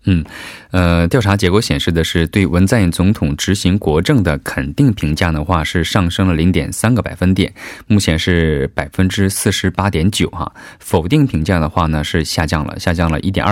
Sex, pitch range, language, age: male, 80-105 Hz, Korean, 20-39